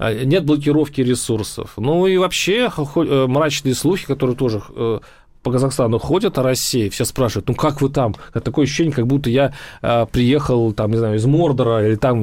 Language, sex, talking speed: Russian, male, 175 wpm